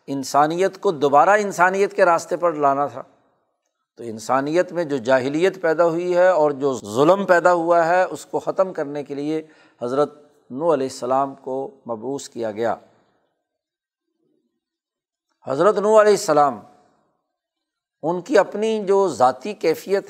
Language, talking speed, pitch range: Urdu, 140 wpm, 145-200 Hz